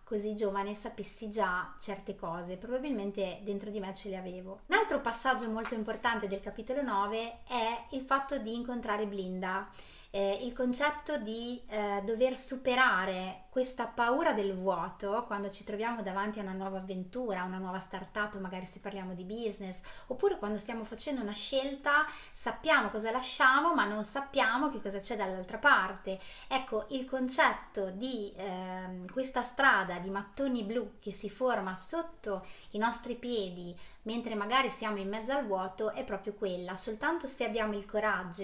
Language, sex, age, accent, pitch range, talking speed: Italian, female, 30-49, native, 195-245 Hz, 160 wpm